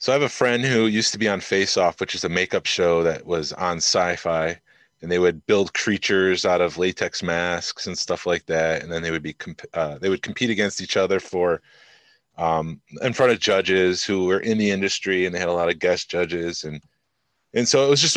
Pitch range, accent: 85-105 Hz, American